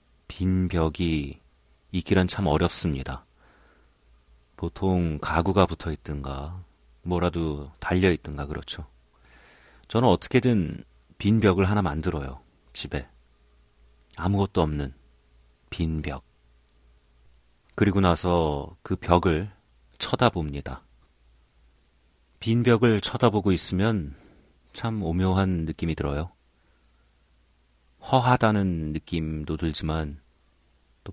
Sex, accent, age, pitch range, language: male, native, 40-59, 65-95 Hz, Korean